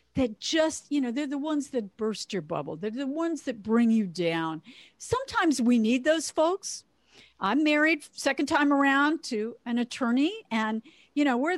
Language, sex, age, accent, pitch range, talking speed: English, female, 50-69, American, 210-295 Hz, 180 wpm